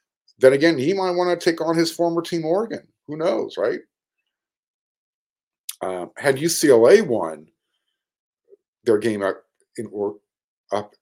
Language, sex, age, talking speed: English, male, 50-69, 125 wpm